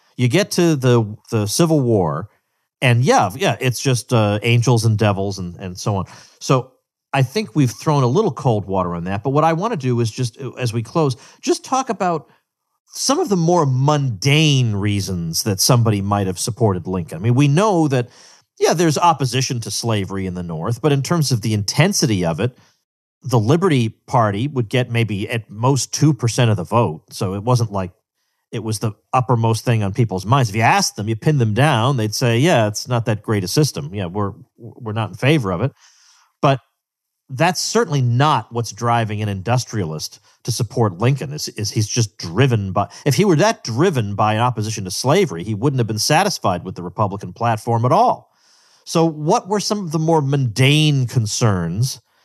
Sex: male